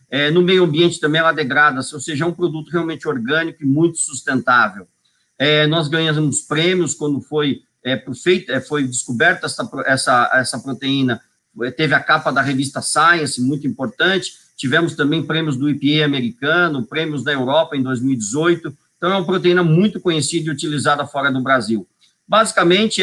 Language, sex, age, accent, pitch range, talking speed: Portuguese, male, 50-69, Brazilian, 135-170 Hz, 150 wpm